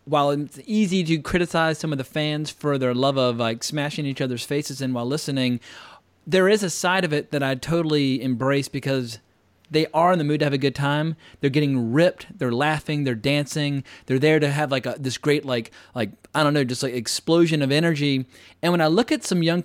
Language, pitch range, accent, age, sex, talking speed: English, 135-170 Hz, American, 30-49, male, 225 wpm